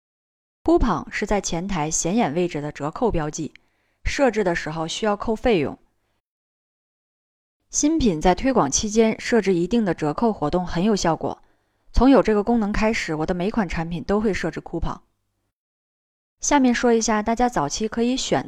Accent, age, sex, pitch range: native, 20-39, female, 170-235 Hz